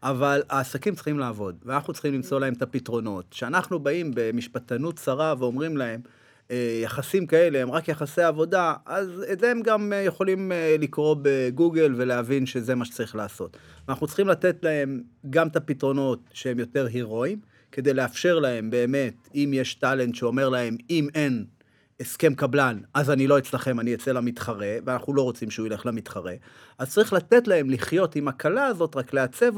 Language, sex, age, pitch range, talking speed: Hebrew, male, 30-49, 125-165 Hz, 165 wpm